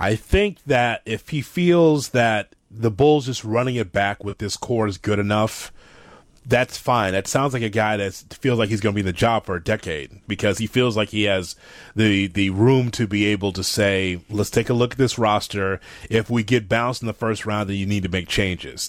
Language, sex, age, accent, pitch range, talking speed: English, male, 30-49, American, 105-125 Hz, 235 wpm